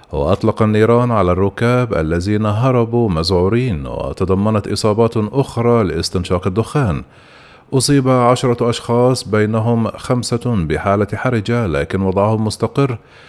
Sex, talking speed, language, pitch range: male, 100 wpm, Arabic, 105-120 Hz